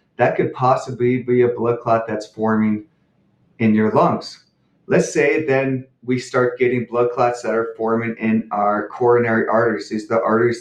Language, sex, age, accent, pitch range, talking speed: English, male, 30-49, American, 115-130 Hz, 175 wpm